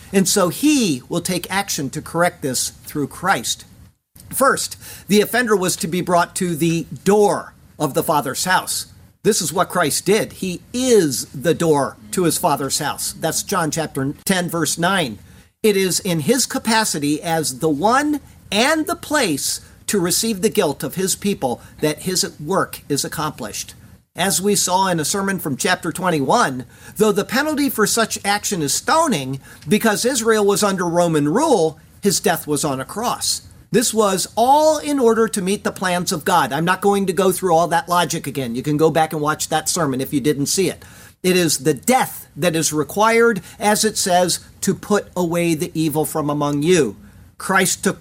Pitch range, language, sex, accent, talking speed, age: 150-205 Hz, English, male, American, 185 wpm, 50-69